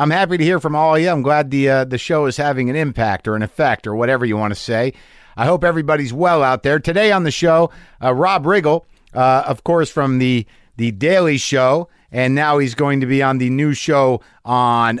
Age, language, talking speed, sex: 50-69, English, 235 wpm, male